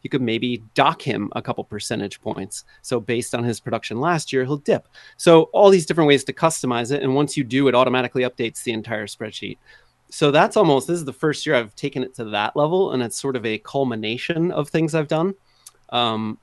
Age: 30-49